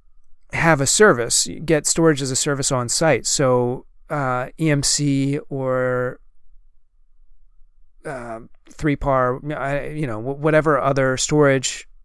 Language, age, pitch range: English, 30-49, 130-155 Hz